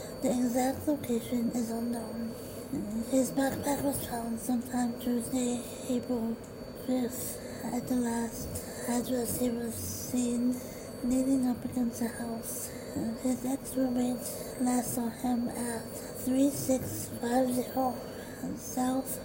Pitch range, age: 240-255 Hz, 20-39